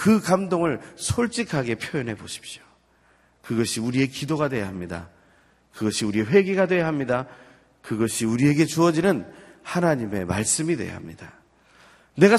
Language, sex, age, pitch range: Korean, male, 40-59, 95-155 Hz